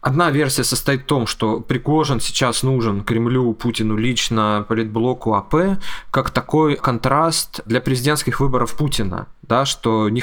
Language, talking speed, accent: Russian, 140 wpm, native